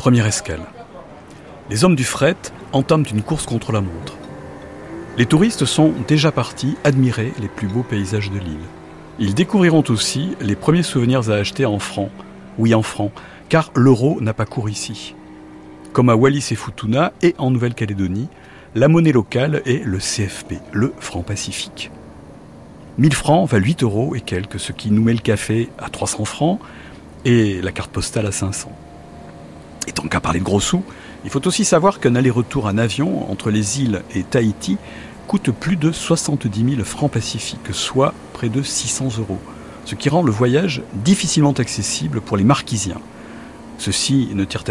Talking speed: 170 wpm